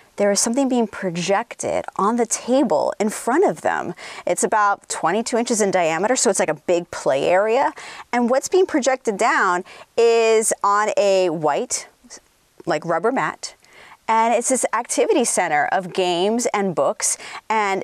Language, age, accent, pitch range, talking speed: English, 30-49, American, 190-260 Hz, 160 wpm